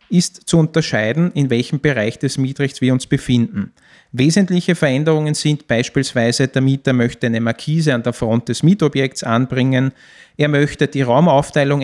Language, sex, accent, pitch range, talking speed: German, male, Austrian, 120-160 Hz, 150 wpm